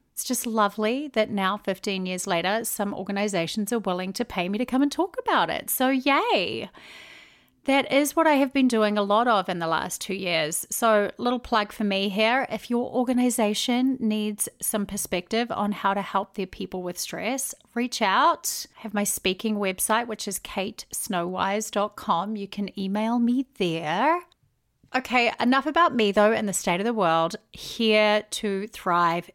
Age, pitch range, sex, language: 30-49, 190-250 Hz, female, English